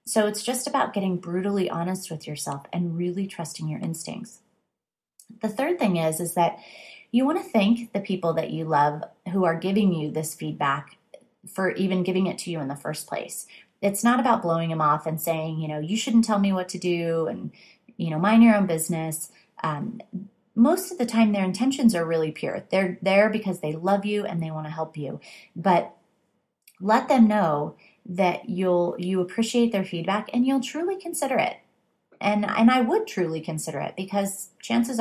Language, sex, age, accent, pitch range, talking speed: English, female, 30-49, American, 170-225 Hz, 195 wpm